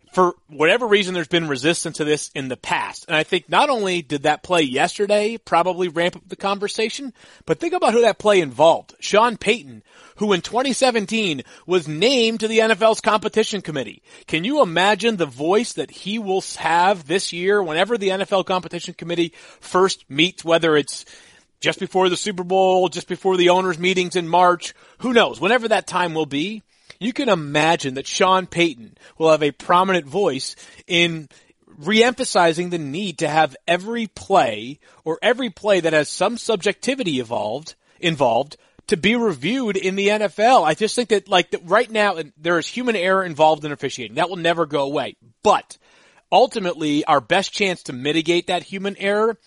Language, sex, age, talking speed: English, male, 30-49, 180 wpm